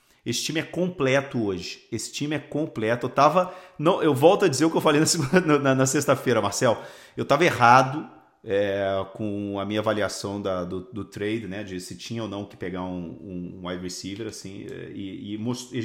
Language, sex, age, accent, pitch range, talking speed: Portuguese, male, 40-59, Brazilian, 115-160 Hz, 220 wpm